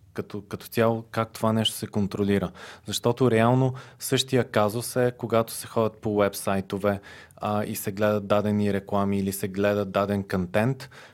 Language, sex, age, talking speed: Bulgarian, male, 30-49, 150 wpm